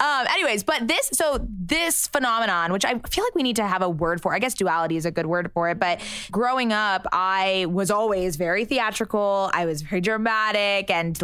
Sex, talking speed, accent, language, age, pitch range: female, 215 wpm, American, English, 20-39, 190-230 Hz